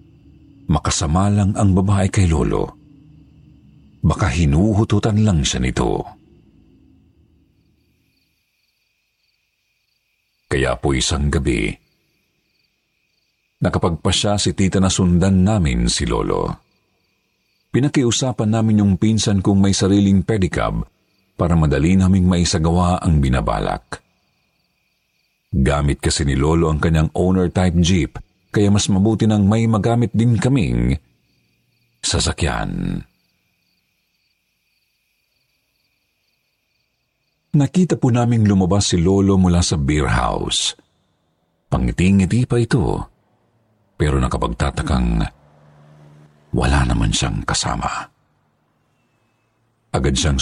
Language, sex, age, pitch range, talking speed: Filipino, male, 50-69, 80-110 Hz, 90 wpm